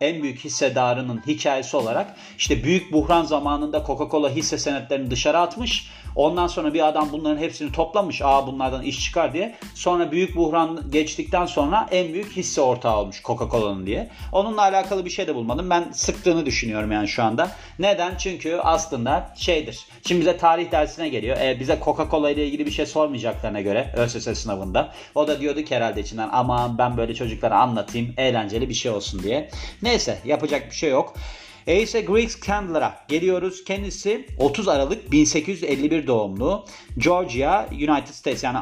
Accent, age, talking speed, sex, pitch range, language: native, 40-59, 160 wpm, male, 130-175 Hz, Turkish